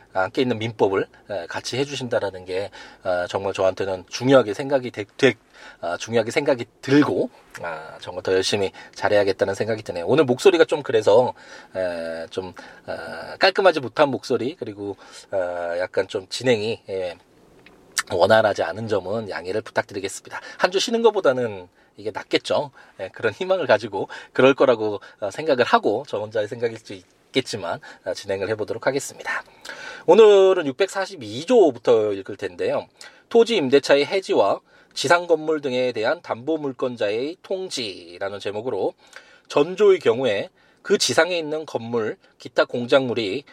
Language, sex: Korean, male